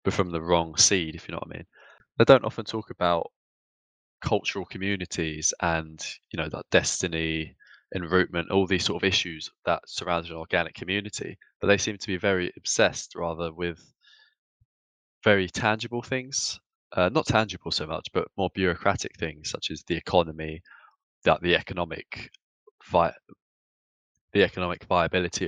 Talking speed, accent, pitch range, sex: 155 wpm, British, 85-95 Hz, male